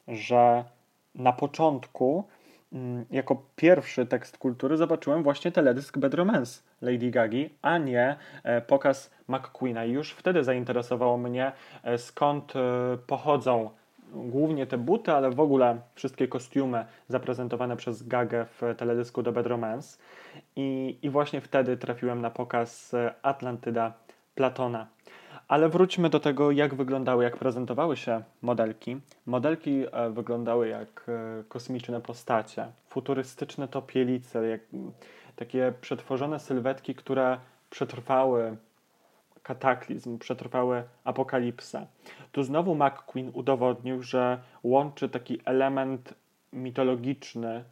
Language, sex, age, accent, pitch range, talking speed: Polish, male, 20-39, native, 120-135 Hz, 105 wpm